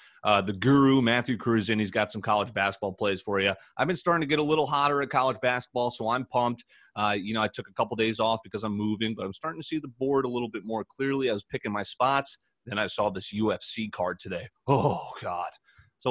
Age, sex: 30-49, male